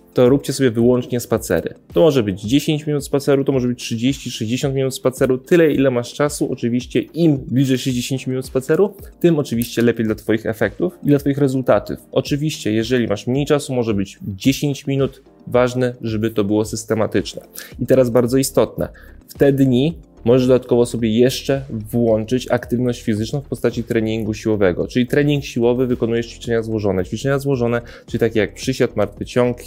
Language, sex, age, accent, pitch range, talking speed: Polish, male, 20-39, native, 110-130 Hz, 170 wpm